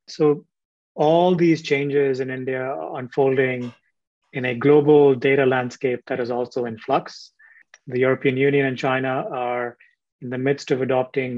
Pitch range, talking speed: 125-145 Hz, 155 wpm